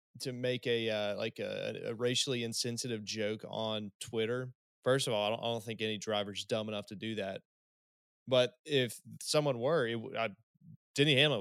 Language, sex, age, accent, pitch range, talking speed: English, male, 20-39, American, 105-125 Hz, 185 wpm